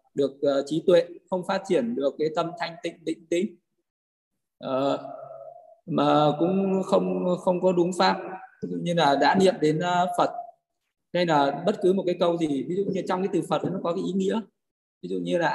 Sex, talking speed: male, 195 wpm